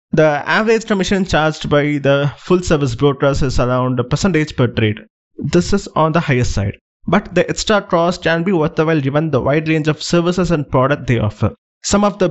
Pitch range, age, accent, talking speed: 135-170 Hz, 20-39, Indian, 200 wpm